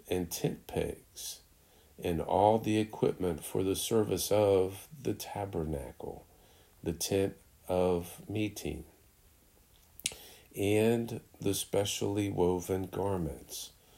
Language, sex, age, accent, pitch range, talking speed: English, male, 50-69, American, 85-105 Hz, 95 wpm